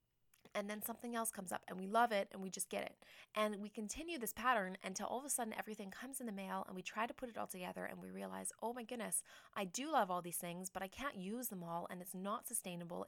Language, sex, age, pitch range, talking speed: English, female, 20-39, 185-220 Hz, 275 wpm